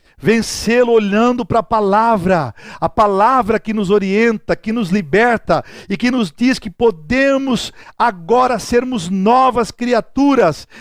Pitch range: 190-245 Hz